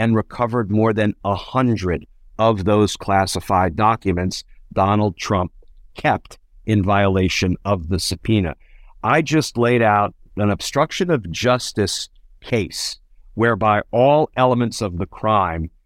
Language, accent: English, American